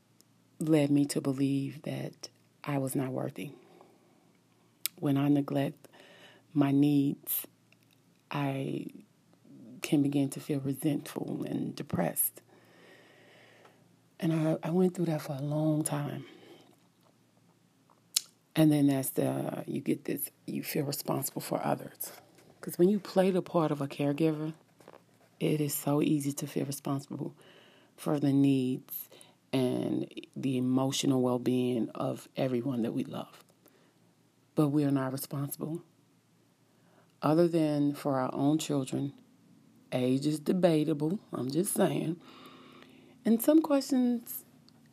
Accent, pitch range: American, 140-165 Hz